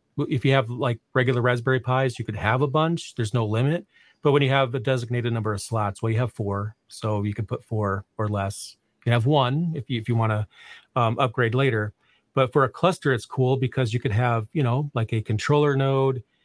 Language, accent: English, American